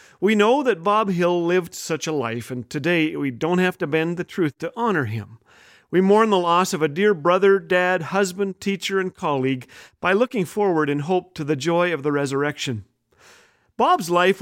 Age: 50-69